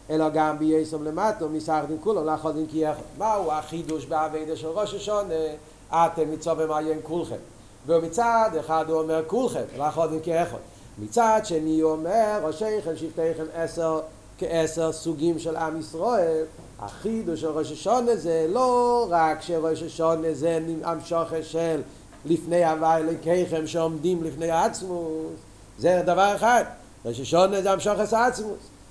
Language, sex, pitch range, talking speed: Hebrew, male, 160-215 Hz, 130 wpm